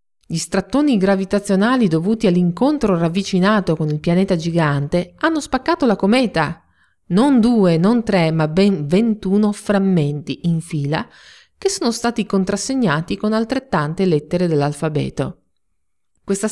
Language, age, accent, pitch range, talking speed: Italian, 40-59, native, 170-220 Hz, 120 wpm